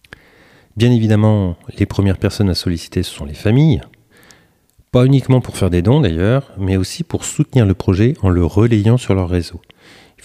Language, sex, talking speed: French, male, 180 wpm